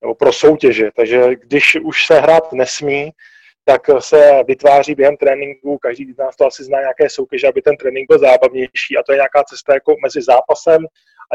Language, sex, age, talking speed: Czech, male, 20-39, 190 wpm